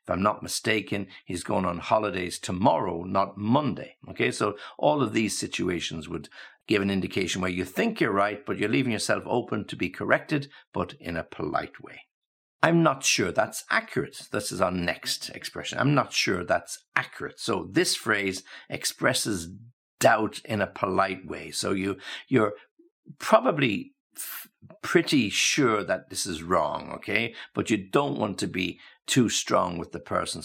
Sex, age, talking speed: male, 60-79, 165 wpm